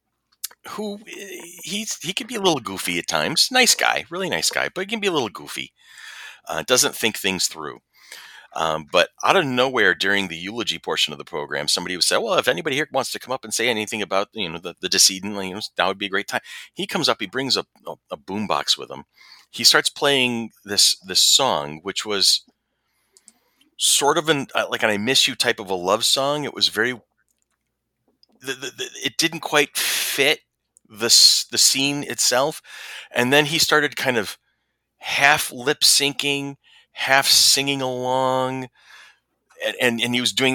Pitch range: 100-145 Hz